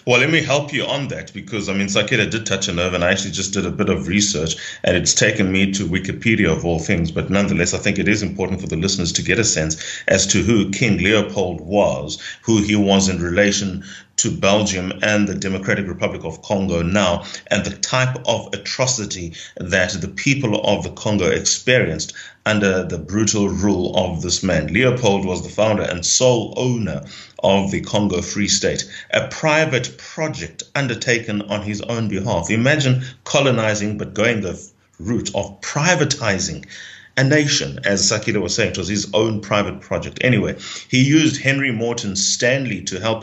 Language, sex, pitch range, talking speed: English, male, 95-115 Hz, 185 wpm